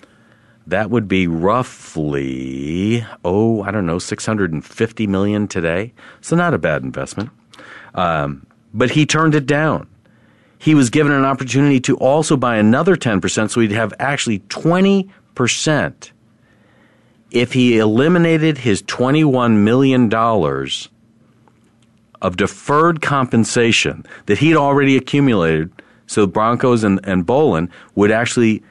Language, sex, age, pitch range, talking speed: English, male, 50-69, 100-135 Hz, 120 wpm